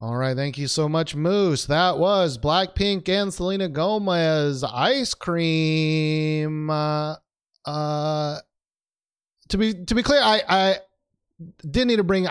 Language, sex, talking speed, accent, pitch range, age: English, male, 135 wpm, American, 125-170 Hz, 30-49